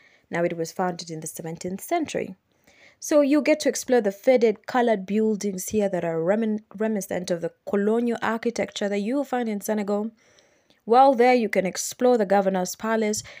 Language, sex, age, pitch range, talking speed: English, female, 20-39, 185-235 Hz, 180 wpm